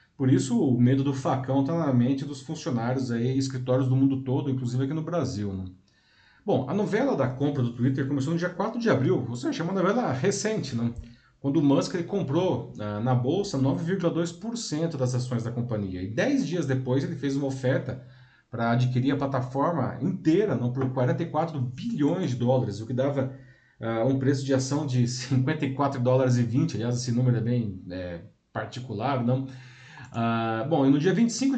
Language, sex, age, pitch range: Portuguese, male, 40-59, 125-170 Hz